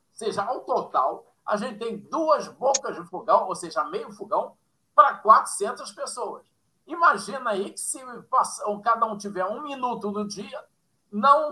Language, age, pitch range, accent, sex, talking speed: Portuguese, 50-69, 185-230 Hz, Brazilian, male, 160 wpm